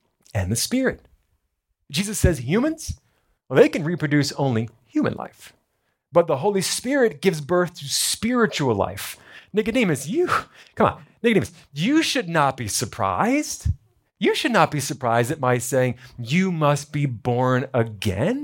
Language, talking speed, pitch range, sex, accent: English, 145 wpm, 140-215 Hz, male, American